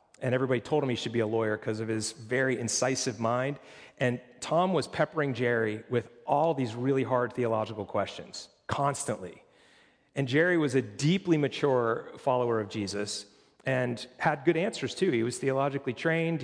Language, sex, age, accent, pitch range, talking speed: English, male, 40-59, American, 125-155 Hz, 170 wpm